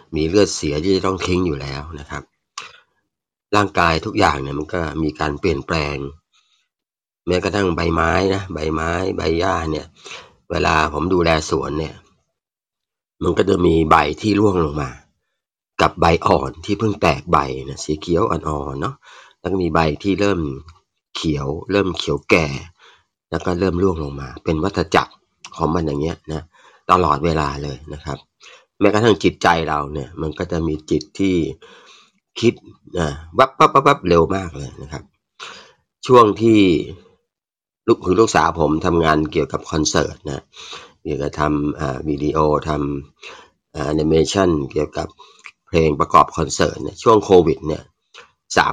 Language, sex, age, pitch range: Thai, male, 30-49, 75-90 Hz